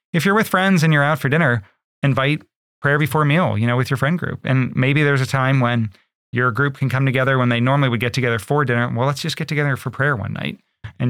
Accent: American